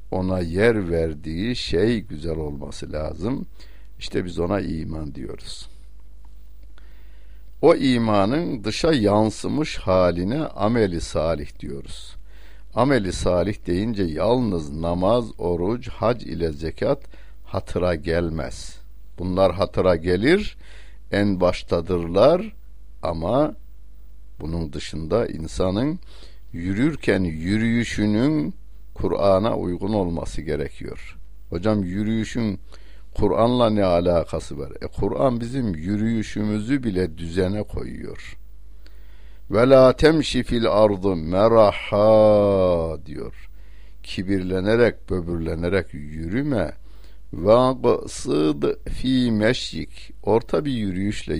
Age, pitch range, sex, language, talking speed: 60-79, 85-110 Hz, male, Turkish, 90 wpm